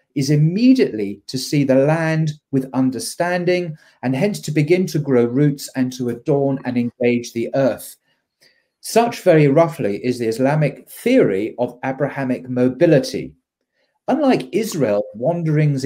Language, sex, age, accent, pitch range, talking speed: English, male, 40-59, British, 125-160 Hz, 130 wpm